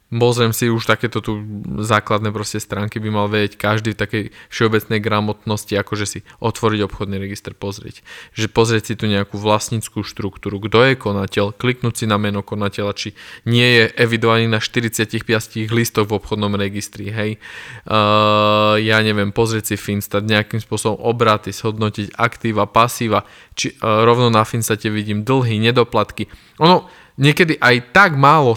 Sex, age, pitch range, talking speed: male, 20-39, 105-120 Hz, 150 wpm